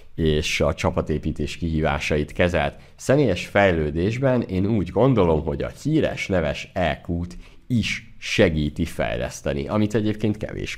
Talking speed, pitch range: 115 wpm, 80-105 Hz